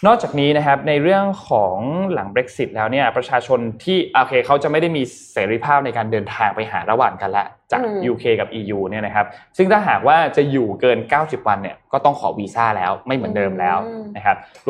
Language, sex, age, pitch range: Thai, male, 20-39, 115-160 Hz